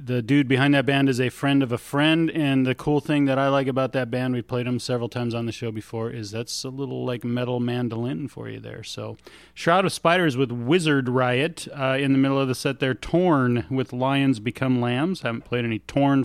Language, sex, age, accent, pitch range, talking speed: English, male, 40-59, American, 125-145 Hz, 235 wpm